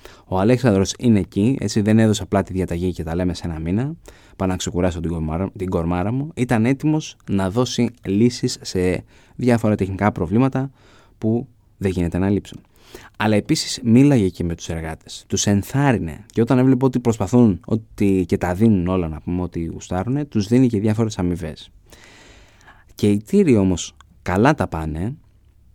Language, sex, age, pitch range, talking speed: Greek, male, 20-39, 90-120 Hz, 165 wpm